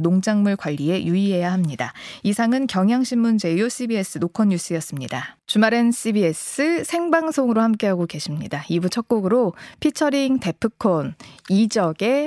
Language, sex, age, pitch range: Korean, female, 20-39, 170-235 Hz